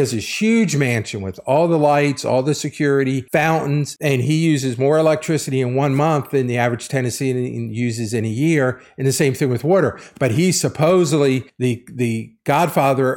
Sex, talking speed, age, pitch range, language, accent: male, 180 wpm, 50-69, 125-155 Hz, English, American